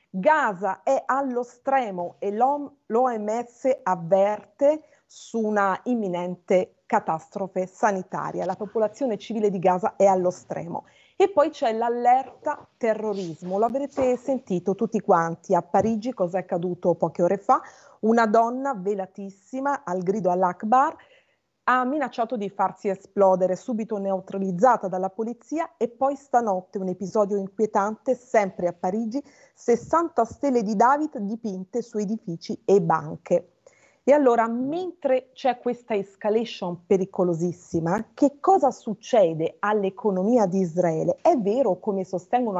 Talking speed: 125 wpm